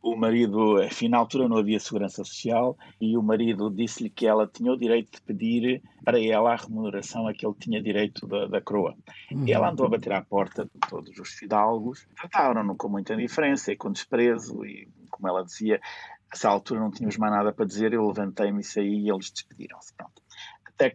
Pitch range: 105-125 Hz